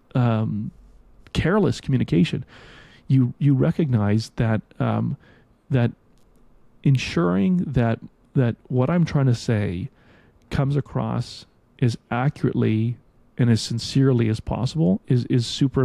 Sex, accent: male, American